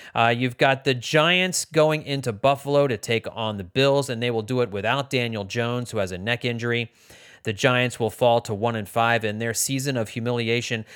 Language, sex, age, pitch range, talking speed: English, male, 30-49, 115-150 Hz, 215 wpm